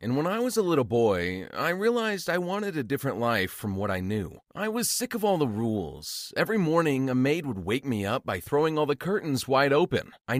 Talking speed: 235 wpm